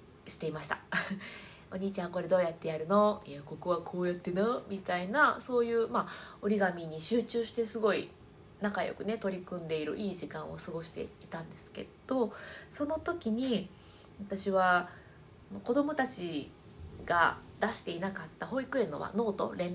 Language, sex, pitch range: Japanese, female, 180-235 Hz